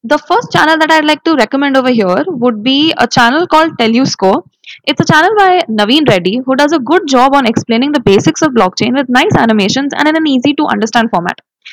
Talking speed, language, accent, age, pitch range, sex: 230 wpm, English, Indian, 20-39, 220-290 Hz, female